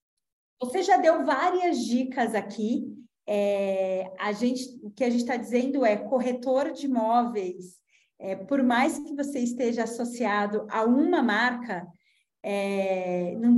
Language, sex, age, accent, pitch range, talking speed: Portuguese, female, 20-39, Brazilian, 215-275 Hz, 135 wpm